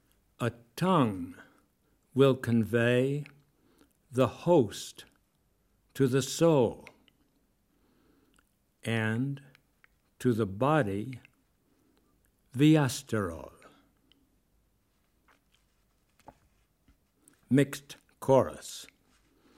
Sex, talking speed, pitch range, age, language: male, 50 wpm, 125-155 Hz, 60-79, German